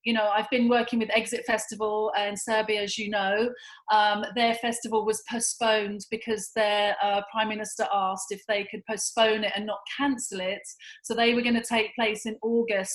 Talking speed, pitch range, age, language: 195 wpm, 210-230 Hz, 30-49, English